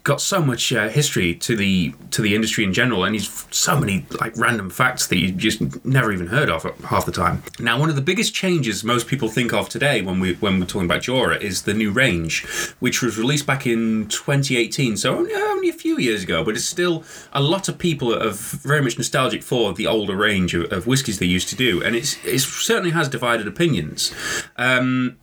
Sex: male